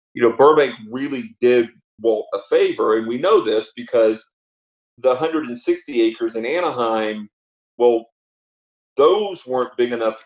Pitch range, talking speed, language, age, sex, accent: 110-130 Hz, 145 wpm, English, 40-59, male, American